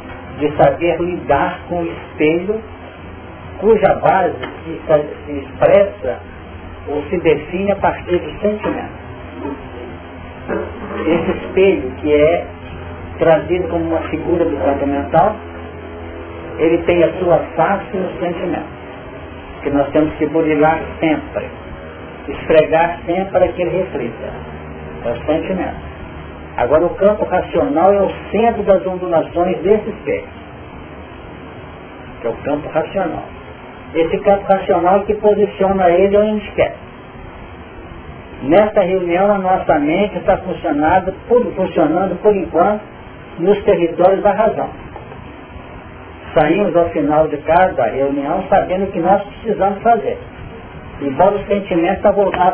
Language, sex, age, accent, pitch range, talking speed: Portuguese, male, 50-69, Brazilian, 140-195 Hz, 125 wpm